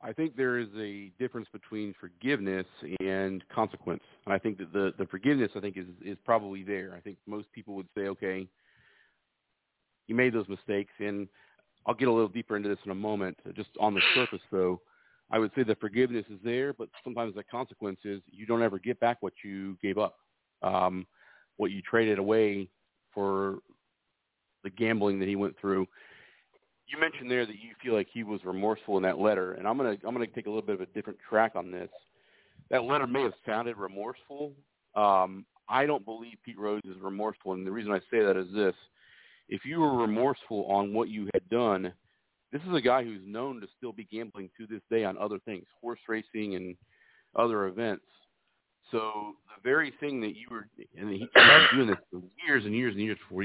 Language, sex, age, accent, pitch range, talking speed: English, male, 40-59, American, 95-115 Hz, 210 wpm